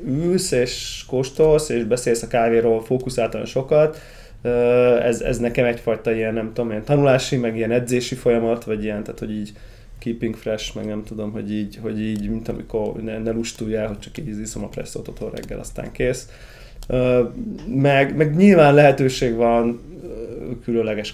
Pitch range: 110-125 Hz